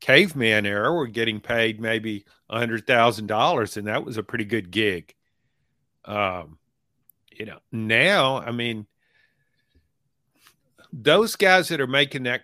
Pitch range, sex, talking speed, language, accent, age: 115-140 Hz, male, 140 wpm, English, American, 50-69